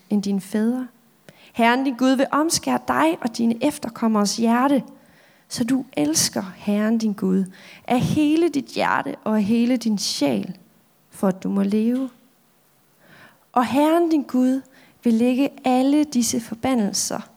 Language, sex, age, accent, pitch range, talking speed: Danish, female, 30-49, native, 205-255 Hz, 145 wpm